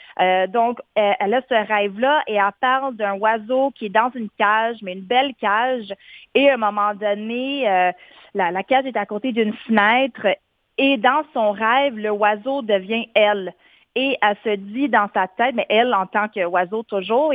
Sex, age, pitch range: female, 30-49, 205-255 Hz